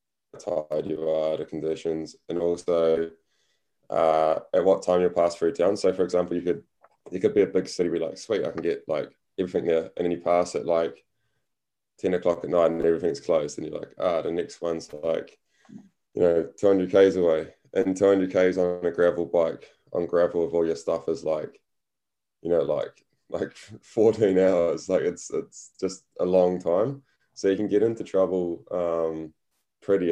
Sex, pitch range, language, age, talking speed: male, 85-95 Hz, English, 20-39, 195 wpm